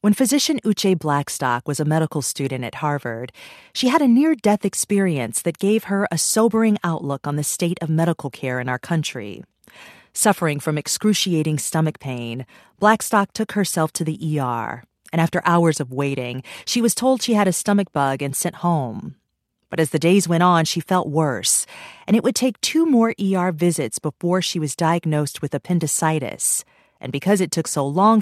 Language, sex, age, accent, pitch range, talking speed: English, female, 40-59, American, 145-200 Hz, 185 wpm